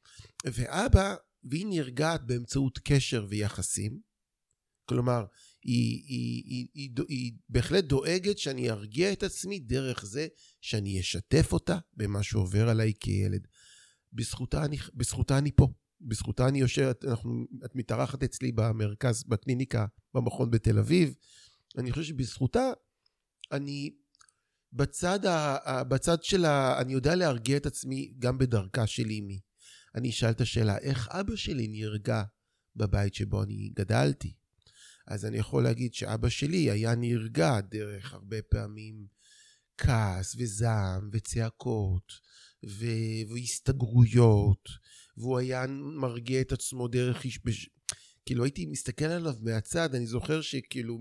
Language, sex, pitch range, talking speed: Hebrew, male, 110-140 Hz, 125 wpm